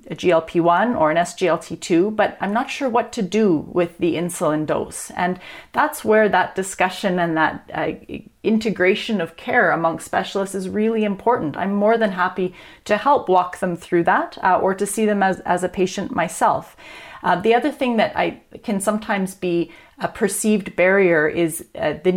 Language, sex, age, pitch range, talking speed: English, female, 30-49, 170-210 Hz, 180 wpm